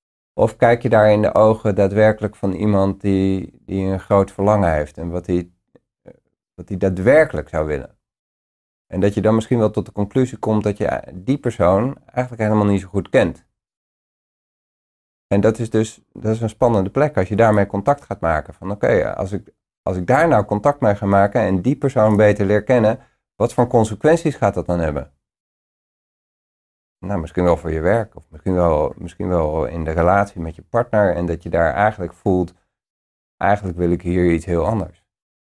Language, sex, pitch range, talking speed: Dutch, male, 90-105 Hz, 190 wpm